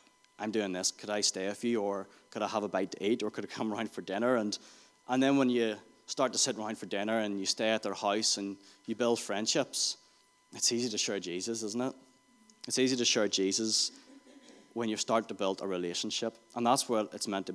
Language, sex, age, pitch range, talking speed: English, male, 20-39, 100-120 Hz, 235 wpm